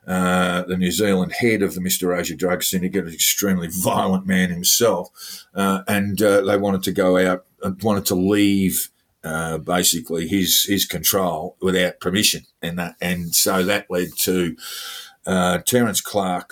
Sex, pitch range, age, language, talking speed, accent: male, 85-95 Hz, 50-69, English, 165 wpm, Australian